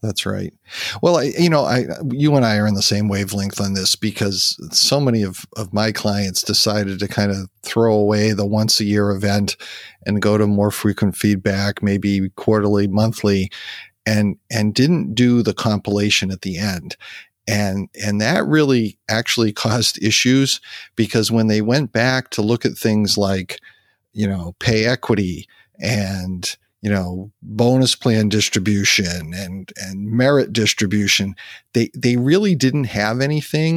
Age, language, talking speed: 40-59, English, 160 wpm